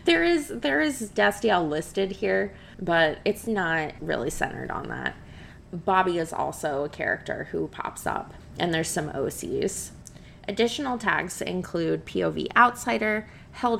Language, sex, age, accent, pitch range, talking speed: English, female, 20-39, American, 175-215 Hz, 140 wpm